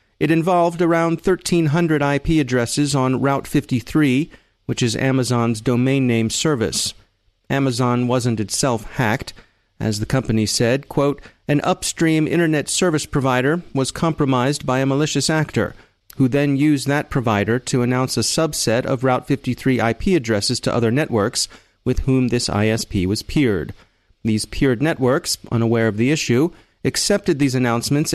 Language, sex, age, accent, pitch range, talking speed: English, male, 40-59, American, 115-150 Hz, 145 wpm